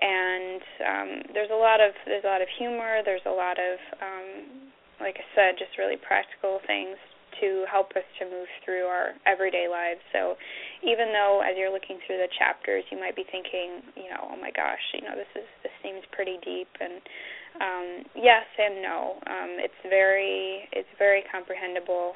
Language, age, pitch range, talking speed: English, 10-29, 180-200 Hz, 185 wpm